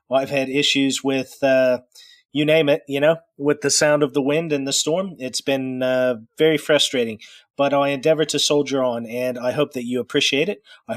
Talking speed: 210 wpm